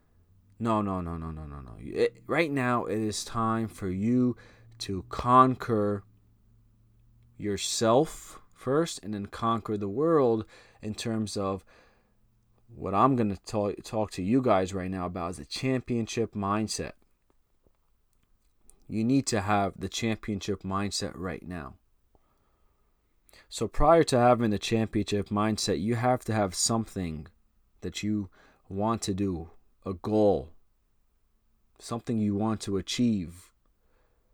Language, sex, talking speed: English, male, 130 wpm